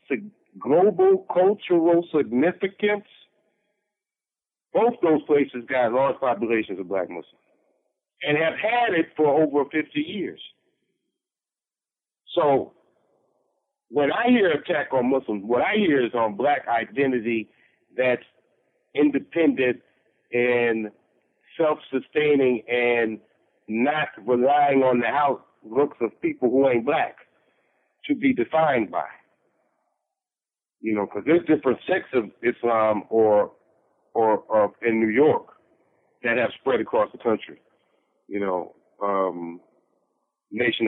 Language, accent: English, American